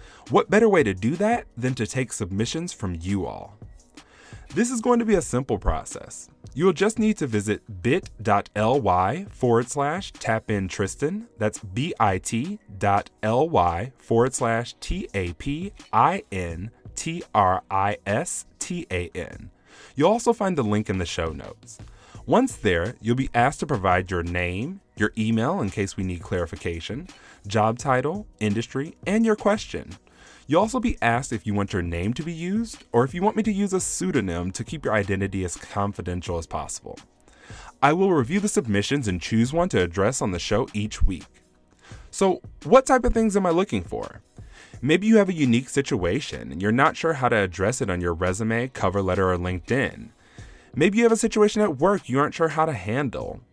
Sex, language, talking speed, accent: male, English, 175 wpm, American